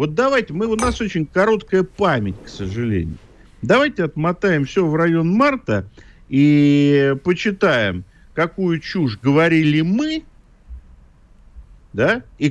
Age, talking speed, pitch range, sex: 50-69, 110 wpm, 125-205 Hz, male